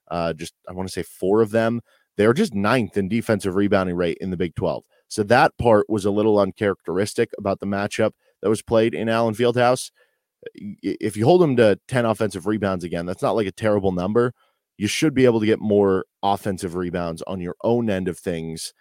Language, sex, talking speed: English, male, 210 wpm